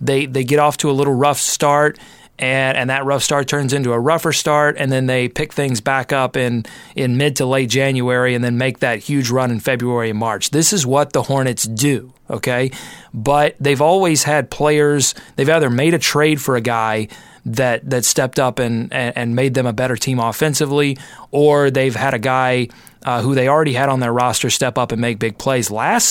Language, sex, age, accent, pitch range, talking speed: English, male, 30-49, American, 125-145 Hz, 215 wpm